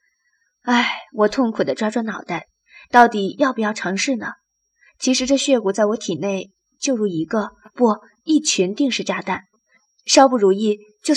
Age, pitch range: 20-39, 195-255 Hz